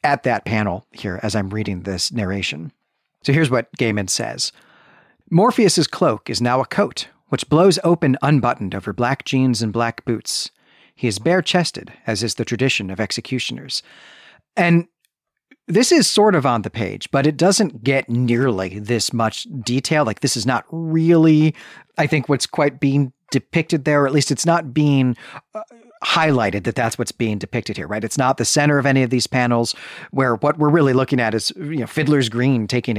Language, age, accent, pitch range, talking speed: English, 40-59, American, 115-150 Hz, 190 wpm